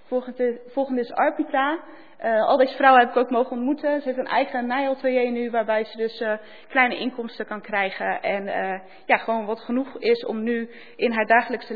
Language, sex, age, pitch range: Dutch, female, 20-39, 210-260 Hz